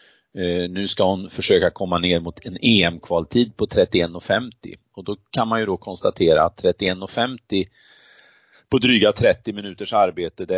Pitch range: 90-105 Hz